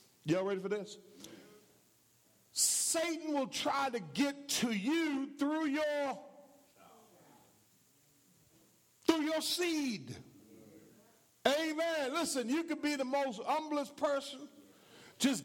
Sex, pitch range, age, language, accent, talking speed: male, 220-290 Hz, 50-69, English, American, 100 wpm